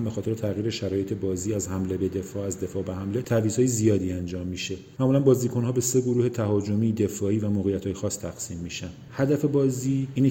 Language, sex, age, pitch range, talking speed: Persian, male, 40-59, 100-125 Hz, 185 wpm